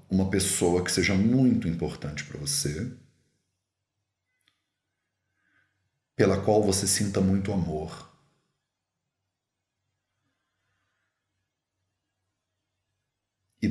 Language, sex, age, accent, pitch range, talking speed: English, male, 40-59, Brazilian, 95-110 Hz, 65 wpm